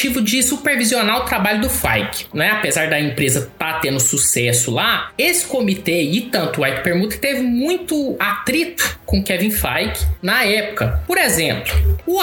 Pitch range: 165-245 Hz